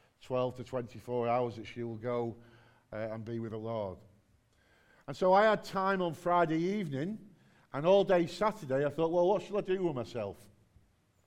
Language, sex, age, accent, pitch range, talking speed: English, male, 50-69, British, 120-160 Hz, 185 wpm